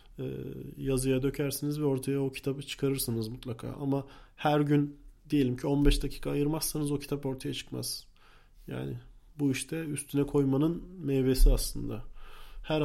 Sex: male